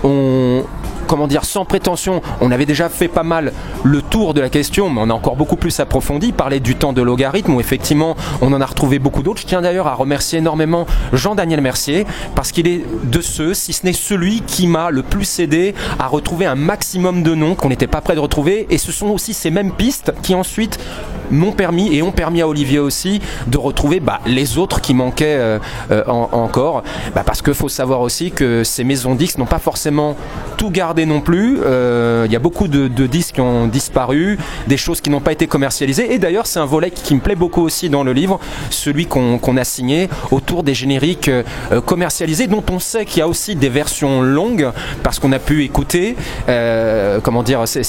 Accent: French